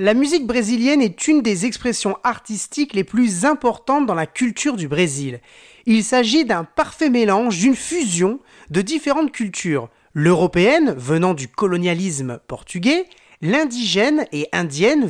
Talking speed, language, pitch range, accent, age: 135 wpm, French, 150-245 Hz, French, 30-49